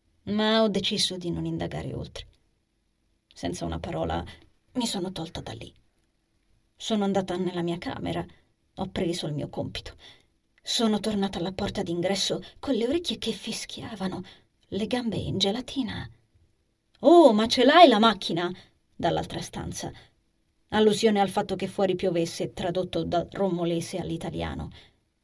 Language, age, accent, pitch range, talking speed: Italian, 30-49, native, 170-215 Hz, 135 wpm